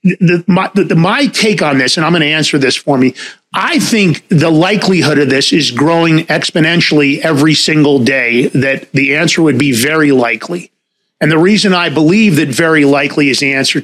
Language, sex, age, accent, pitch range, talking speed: English, male, 40-59, American, 145-185 Hz, 195 wpm